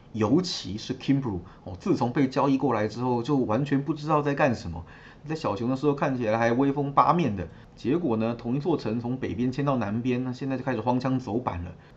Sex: male